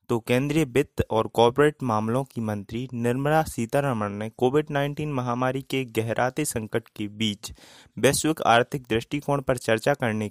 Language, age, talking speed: Hindi, 20-39, 145 wpm